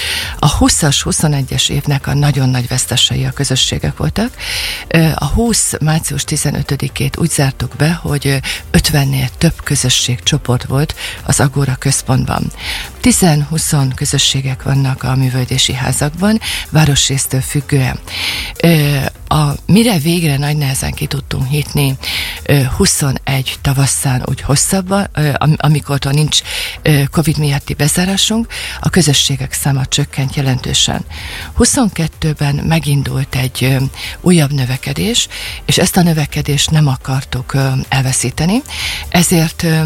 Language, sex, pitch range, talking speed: Hungarian, female, 135-155 Hz, 105 wpm